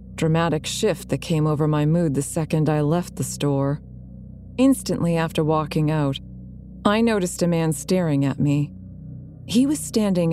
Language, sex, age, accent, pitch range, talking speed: English, female, 30-49, American, 140-175 Hz, 155 wpm